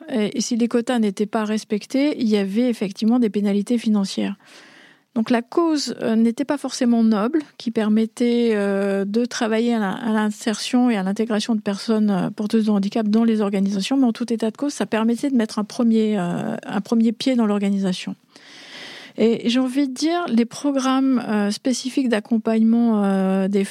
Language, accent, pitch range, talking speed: French, French, 215-255 Hz, 165 wpm